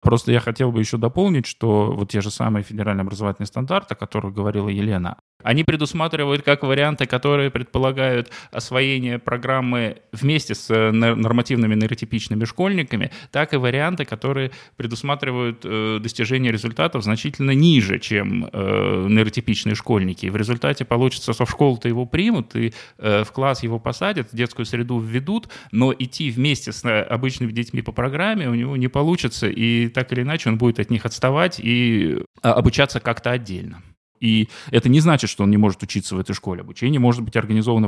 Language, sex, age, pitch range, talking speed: Russian, male, 20-39, 105-130 Hz, 160 wpm